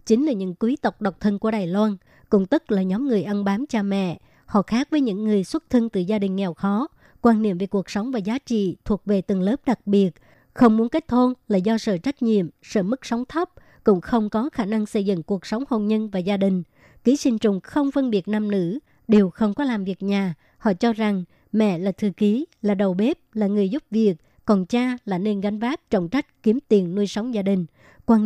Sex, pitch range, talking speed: male, 195-230 Hz, 245 wpm